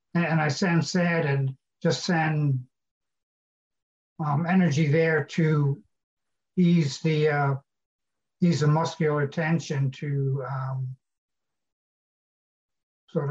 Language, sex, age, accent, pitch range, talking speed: English, male, 60-79, American, 135-165 Hz, 95 wpm